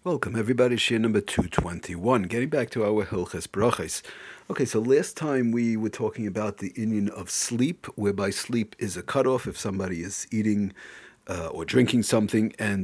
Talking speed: 175 wpm